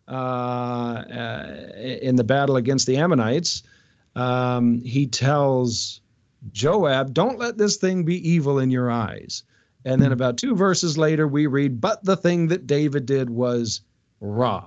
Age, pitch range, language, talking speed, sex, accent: 40-59, 120-165 Hz, English, 150 wpm, male, American